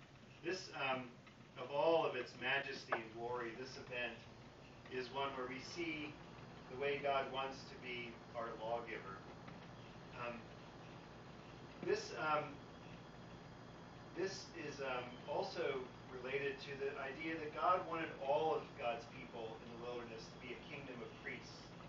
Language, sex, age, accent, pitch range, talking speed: English, male, 40-59, American, 120-145 Hz, 135 wpm